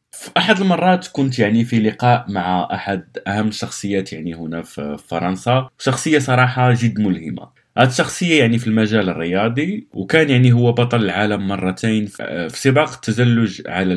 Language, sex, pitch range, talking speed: Arabic, male, 100-140 Hz, 145 wpm